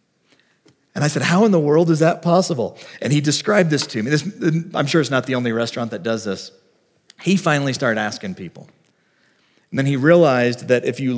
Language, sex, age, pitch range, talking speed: English, male, 40-59, 110-150 Hz, 210 wpm